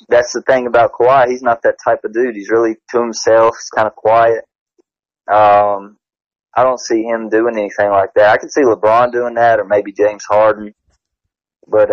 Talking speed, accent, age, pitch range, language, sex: 190 wpm, American, 20-39, 105-120 Hz, English, male